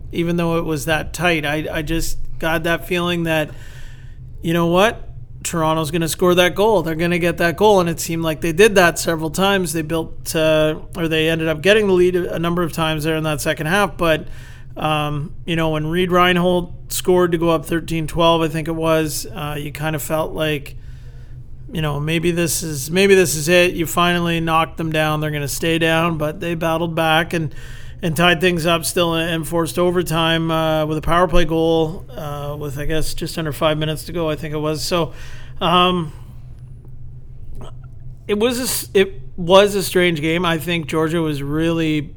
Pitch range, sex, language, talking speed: 150-170 Hz, male, English, 205 wpm